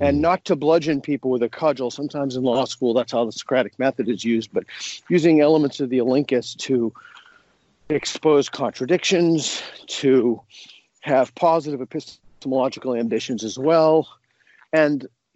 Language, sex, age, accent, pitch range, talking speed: English, male, 50-69, American, 125-155 Hz, 140 wpm